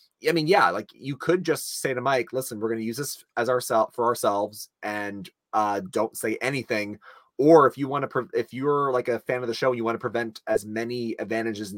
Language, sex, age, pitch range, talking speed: English, male, 30-49, 110-130 Hz, 235 wpm